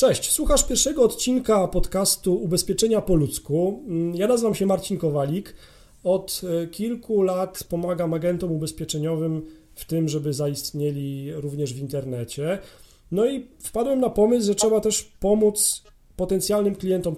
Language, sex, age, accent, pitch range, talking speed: Polish, male, 40-59, native, 150-190 Hz, 130 wpm